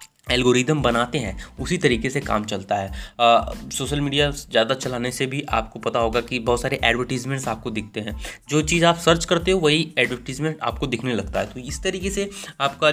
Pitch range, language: 110-145 Hz, Hindi